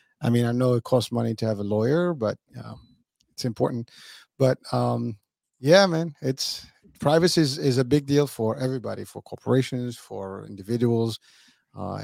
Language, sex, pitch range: English, male, 110-140 Hz